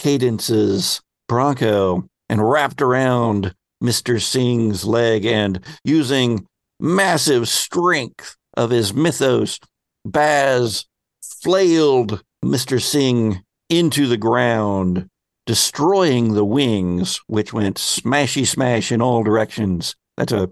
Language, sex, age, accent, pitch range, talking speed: English, male, 60-79, American, 100-135 Hz, 95 wpm